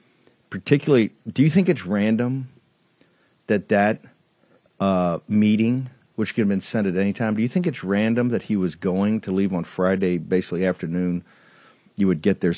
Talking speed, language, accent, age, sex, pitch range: 175 wpm, English, American, 50-69, male, 100-140 Hz